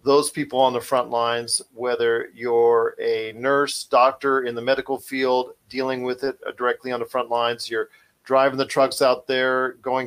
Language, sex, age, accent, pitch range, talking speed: English, male, 40-59, American, 120-140 Hz, 180 wpm